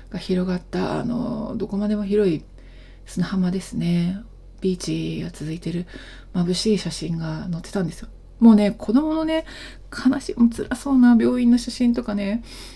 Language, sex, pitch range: Japanese, female, 180-225 Hz